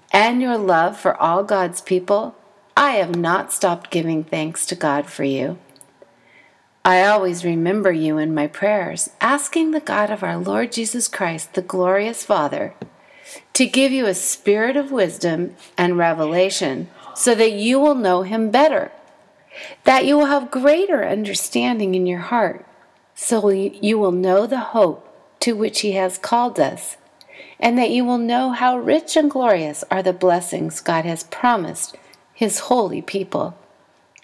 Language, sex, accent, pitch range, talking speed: English, female, American, 180-245 Hz, 160 wpm